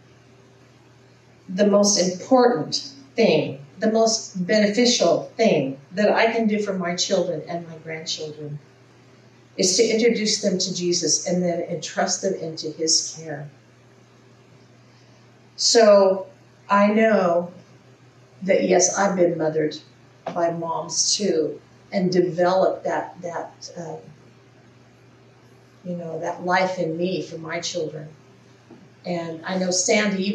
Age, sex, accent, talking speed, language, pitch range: 50-69, female, American, 120 wpm, English, 135-205 Hz